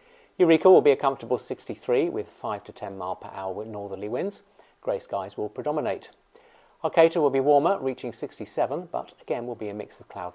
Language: English